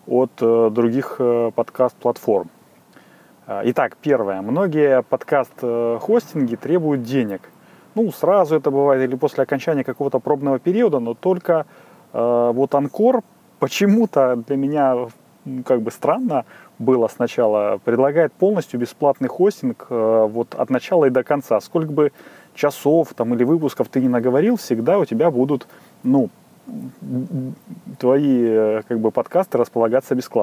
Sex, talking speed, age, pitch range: male, 125 wpm, 30-49, 120-165 Hz